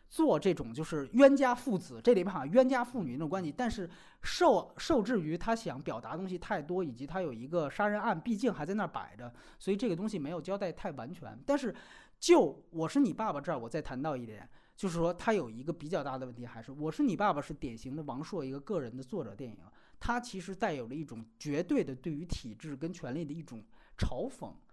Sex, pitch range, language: male, 150-230 Hz, Chinese